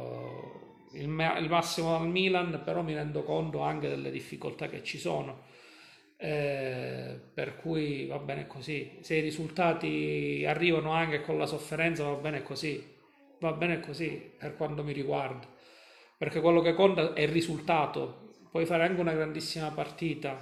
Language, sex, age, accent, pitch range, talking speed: Italian, male, 40-59, native, 145-170 Hz, 150 wpm